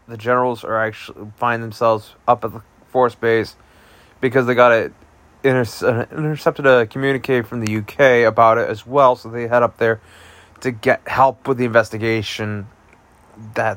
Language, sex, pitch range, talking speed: English, male, 110-130 Hz, 165 wpm